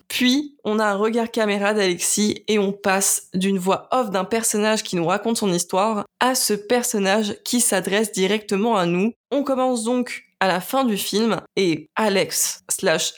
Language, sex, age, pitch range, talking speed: French, female, 20-39, 195-235 Hz, 180 wpm